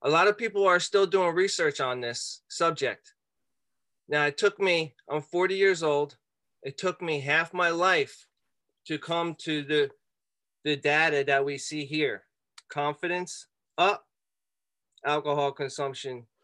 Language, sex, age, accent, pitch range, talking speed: English, male, 30-49, American, 120-170 Hz, 140 wpm